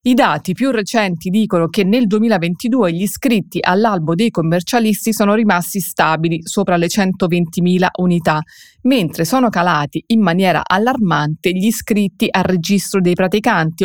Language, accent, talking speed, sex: Italian, native, 140 wpm, female